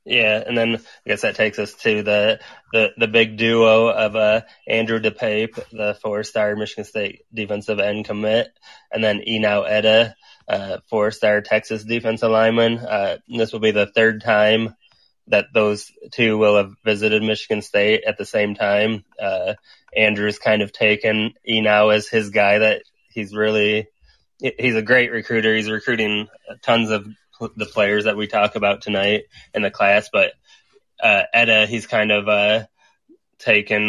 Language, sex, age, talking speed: English, male, 20-39, 160 wpm